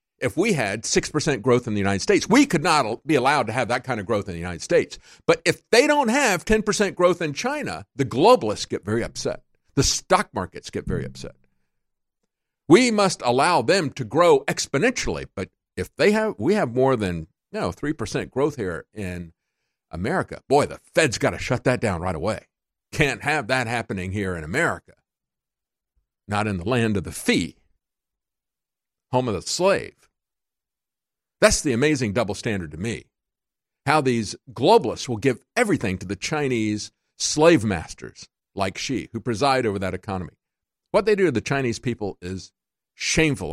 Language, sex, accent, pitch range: English, male, American, 95-140 Hz